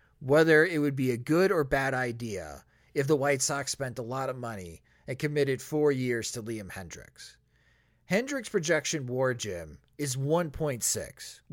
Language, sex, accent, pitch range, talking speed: English, male, American, 115-155 Hz, 160 wpm